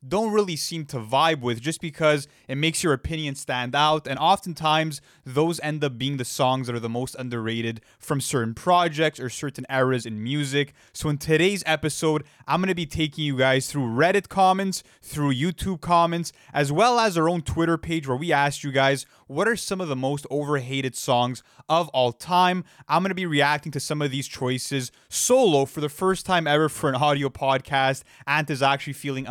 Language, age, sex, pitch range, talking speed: English, 20-39, male, 130-160 Hz, 205 wpm